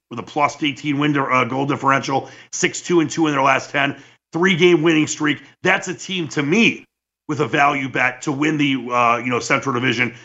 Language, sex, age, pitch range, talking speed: English, male, 40-59, 120-155 Hz, 195 wpm